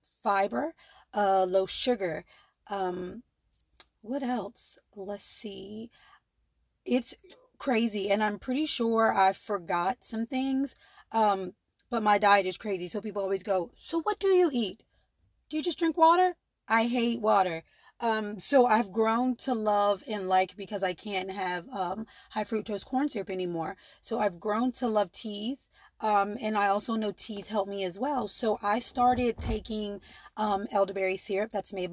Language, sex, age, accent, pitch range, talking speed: English, female, 30-49, American, 190-225 Hz, 160 wpm